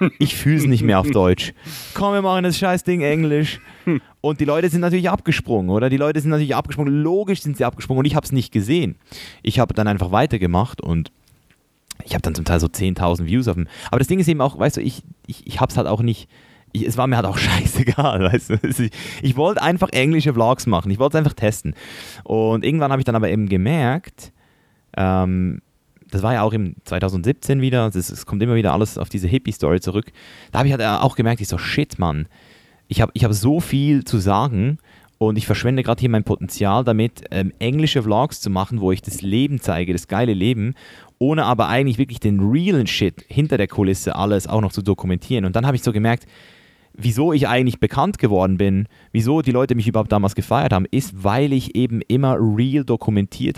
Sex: male